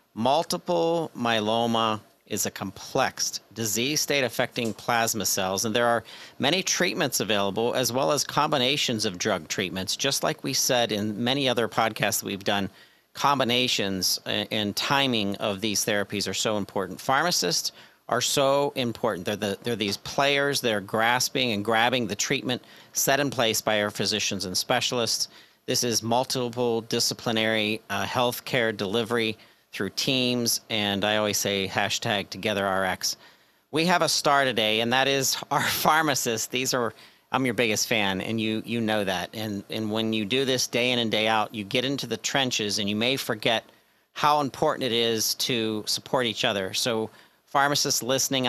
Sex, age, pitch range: male, 40-59, 105-130 Hz